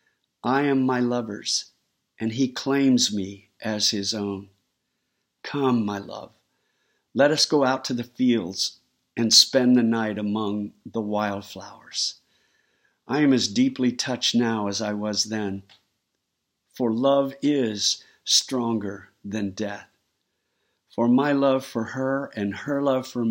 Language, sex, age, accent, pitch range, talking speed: English, male, 50-69, American, 105-125 Hz, 135 wpm